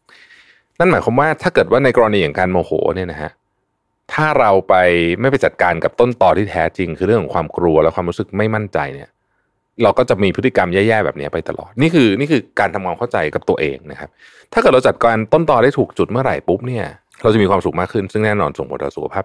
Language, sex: Thai, male